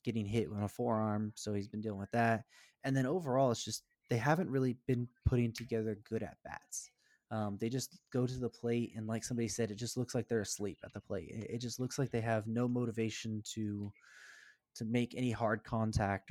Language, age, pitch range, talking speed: English, 20-39, 105-120 Hz, 220 wpm